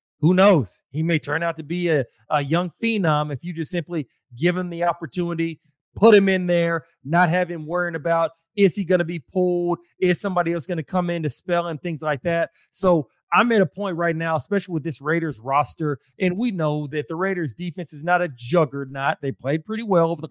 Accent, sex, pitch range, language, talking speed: American, male, 150-185 Hz, English, 230 wpm